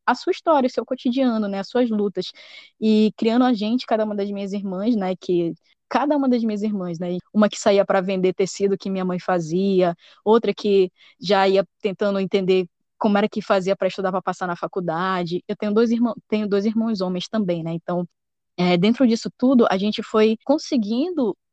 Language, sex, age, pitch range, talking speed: Portuguese, female, 10-29, 185-230 Hz, 200 wpm